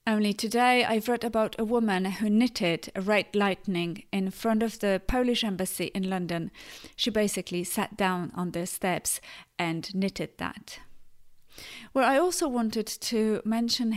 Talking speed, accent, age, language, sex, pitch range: 155 wpm, British, 30-49, English, female, 190-235 Hz